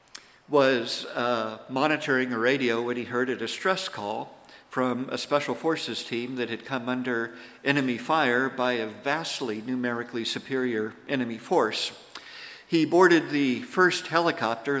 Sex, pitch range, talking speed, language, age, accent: male, 115-135 Hz, 140 wpm, English, 50-69, American